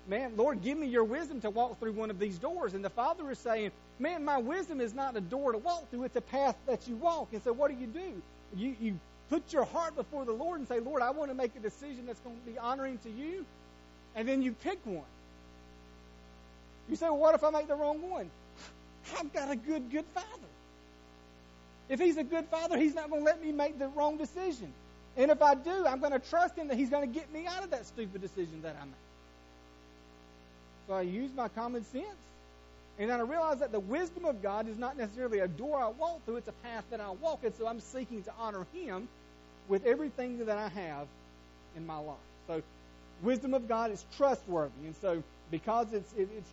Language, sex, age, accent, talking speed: English, male, 40-59, American, 230 wpm